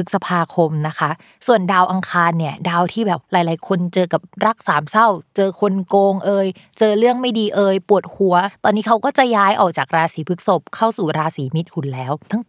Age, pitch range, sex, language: 20-39, 165-215 Hz, female, Thai